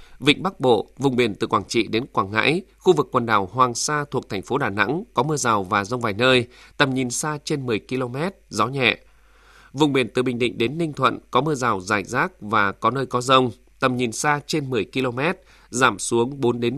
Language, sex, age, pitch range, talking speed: Vietnamese, male, 20-39, 120-145 Hz, 235 wpm